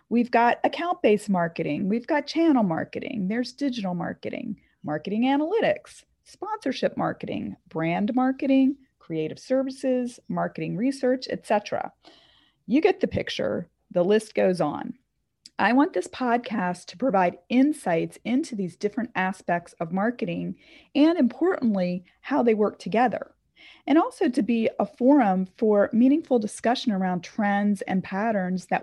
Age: 30-49